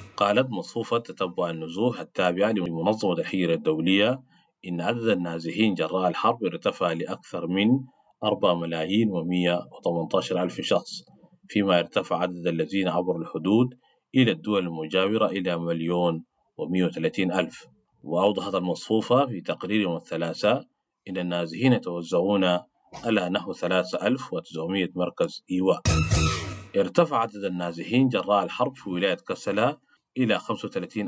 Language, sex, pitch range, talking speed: English, male, 85-105 Hz, 115 wpm